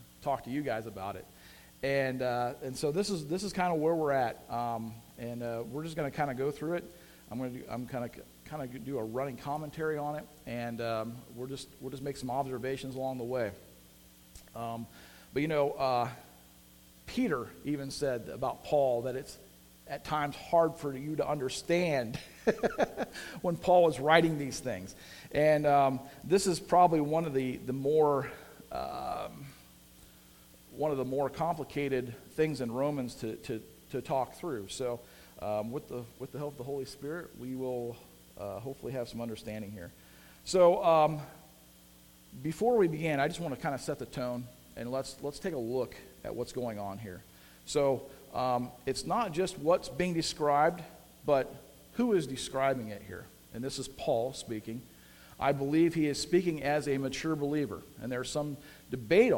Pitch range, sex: 115-150 Hz, male